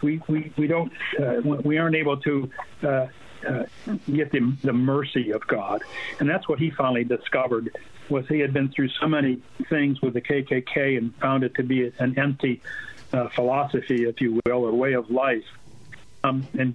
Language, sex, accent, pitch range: English, male, American, 125-145 Hz